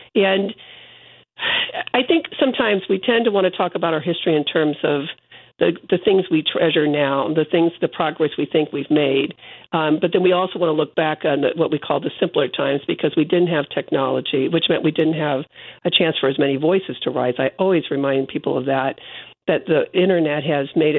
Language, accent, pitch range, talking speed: English, American, 150-180 Hz, 215 wpm